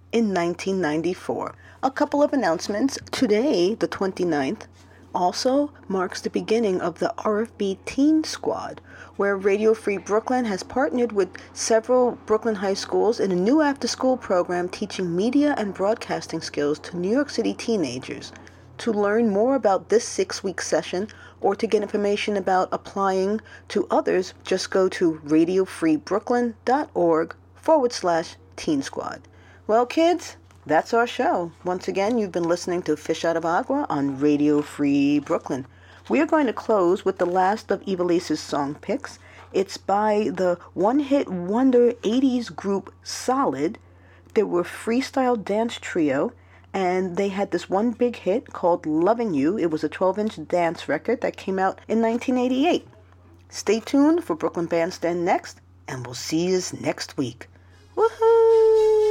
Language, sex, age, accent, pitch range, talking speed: English, female, 40-59, American, 170-245 Hz, 145 wpm